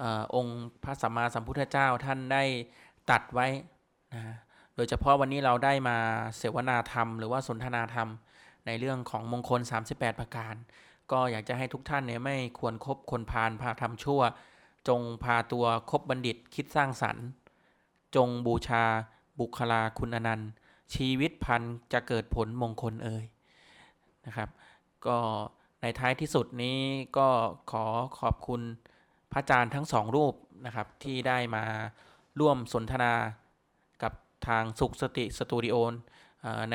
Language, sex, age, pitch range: Thai, male, 20-39, 115-135 Hz